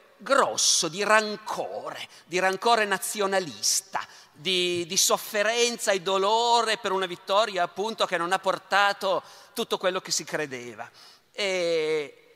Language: Italian